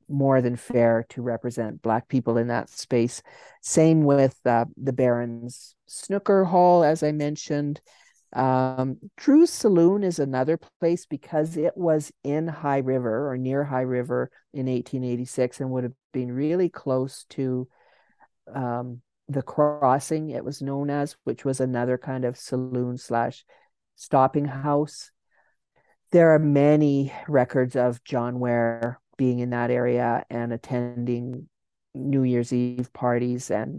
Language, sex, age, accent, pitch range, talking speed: English, male, 50-69, American, 120-145 Hz, 140 wpm